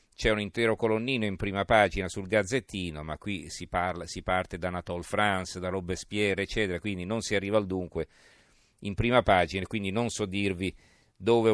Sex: male